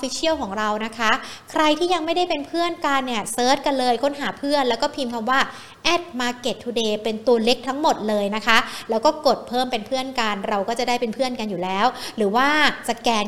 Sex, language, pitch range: female, Thai, 220-275 Hz